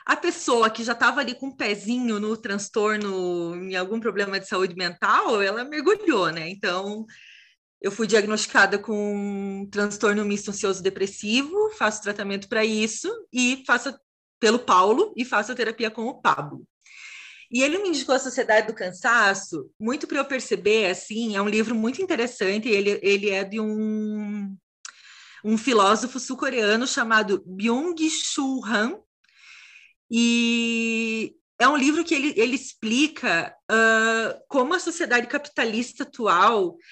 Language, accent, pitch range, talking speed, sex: Portuguese, Brazilian, 205-275 Hz, 145 wpm, female